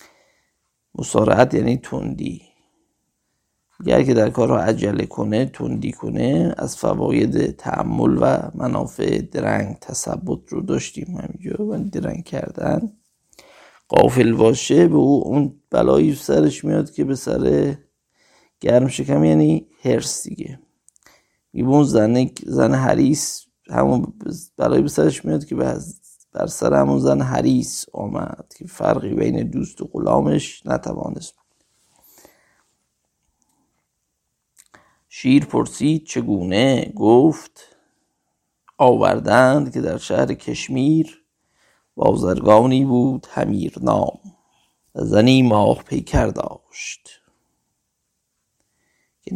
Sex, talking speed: male, 100 wpm